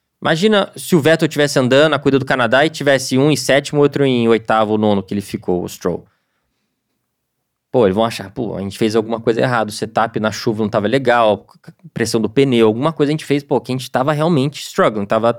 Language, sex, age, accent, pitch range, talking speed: Portuguese, male, 20-39, Brazilian, 120-165 Hz, 225 wpm